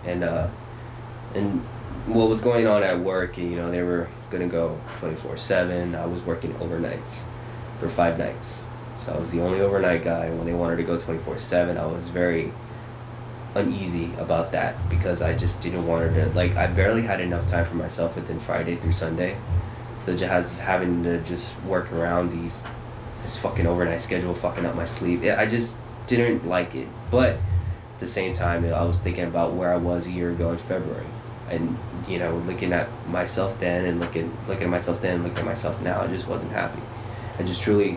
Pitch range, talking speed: 85-115 Hz, 195 wpm